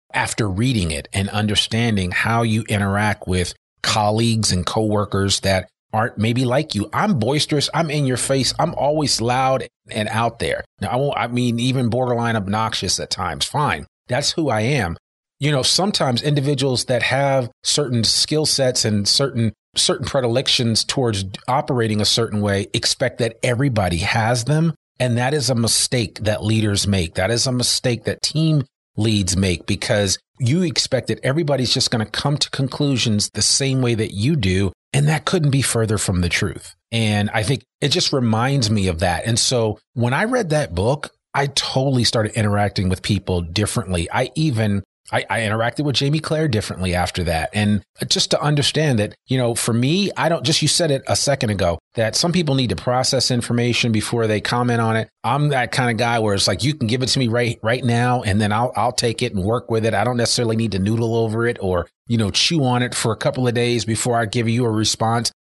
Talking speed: 205 wpm